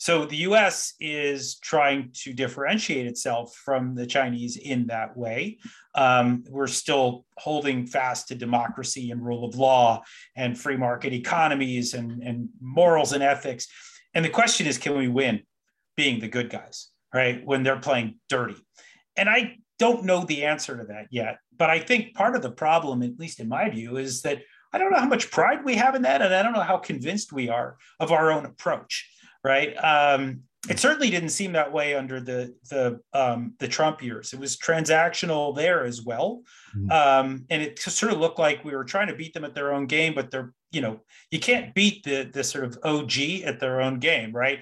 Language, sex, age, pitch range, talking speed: English, male, 40-59, 125-165 Hz, 200 wpm